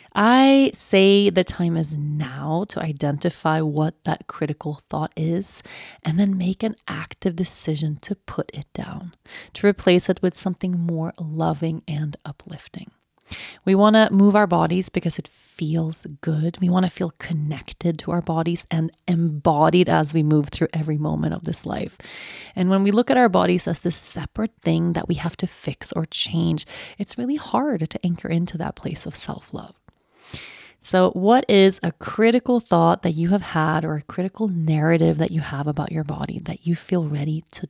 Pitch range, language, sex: 155-185 Hz, English, female